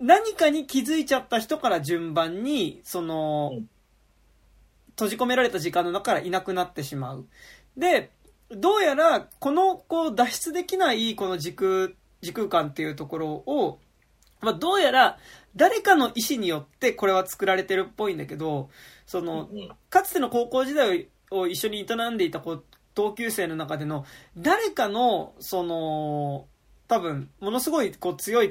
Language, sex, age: Japanese, male, 20-39